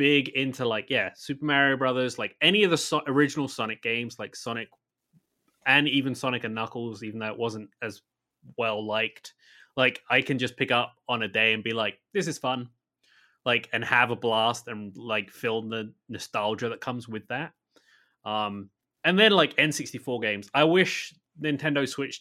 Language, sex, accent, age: English, male, British, 20-39